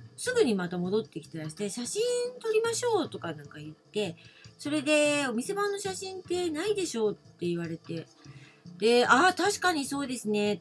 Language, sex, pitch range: Japanese, female, 165-235 Hz